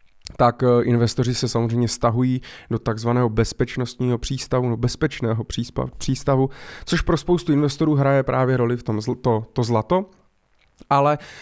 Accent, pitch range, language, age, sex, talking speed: native, 115-135 Hz, Czech, 20-39, male, 135 wpm